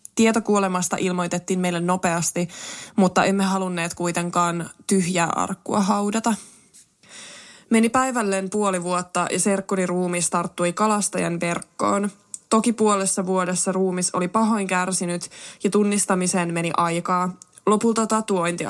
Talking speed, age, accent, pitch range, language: 105 wpm, 20-39, native, 180-205 Hz, Finnish